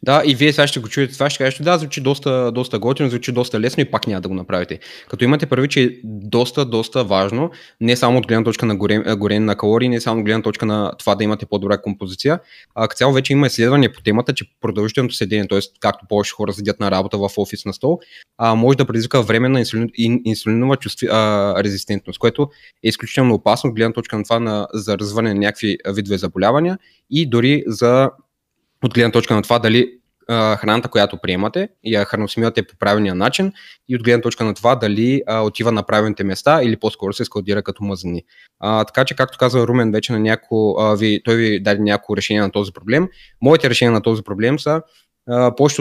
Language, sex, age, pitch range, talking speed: Bulgarian, male, 20-39, 105-130 Hz, 210 wpm